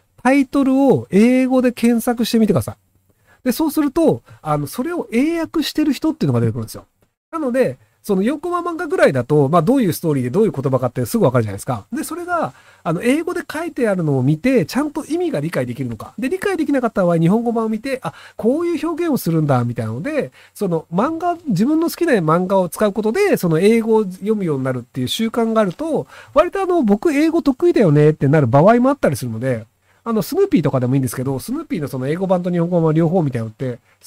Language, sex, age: Japanese, male, 40-59